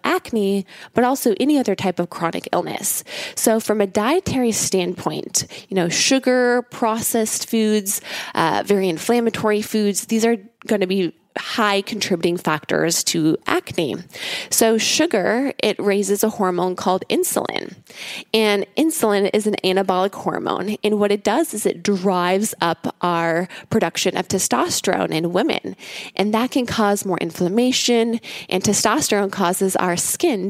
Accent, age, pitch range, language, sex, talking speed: American, 20-39, 185-220 Hz, English, female, 140 wpm